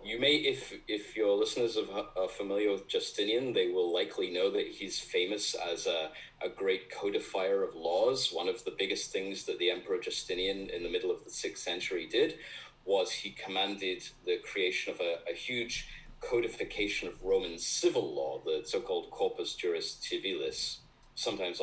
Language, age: English, 30-49